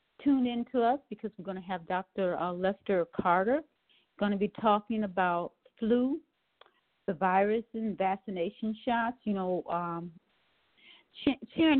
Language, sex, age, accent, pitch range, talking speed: English, female, 50-69, American, 180-235 Hz, 135 wpm